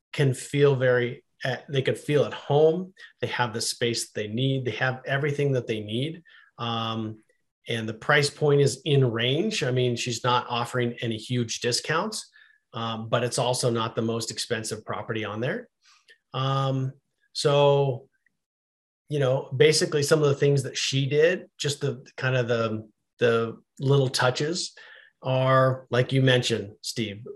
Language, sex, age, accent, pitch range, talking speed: English, male, 40-59, American, 115-145 Hz, 160 wpm